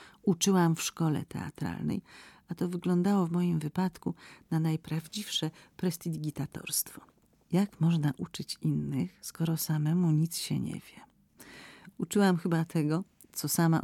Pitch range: 155-180 Hz